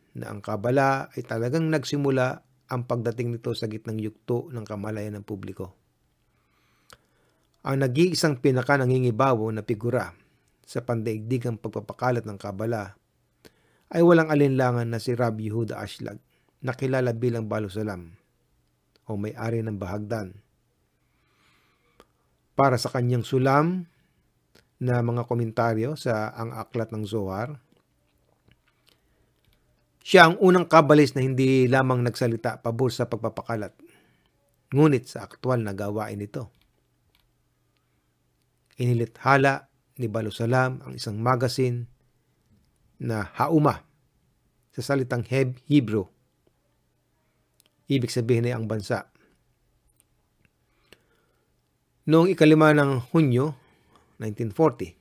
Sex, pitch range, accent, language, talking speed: male, 110-130 Hz, native, Filipino, 100 wpm